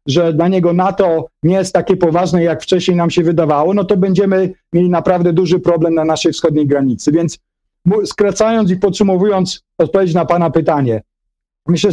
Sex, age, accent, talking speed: male, 50-69, native, 165 wpm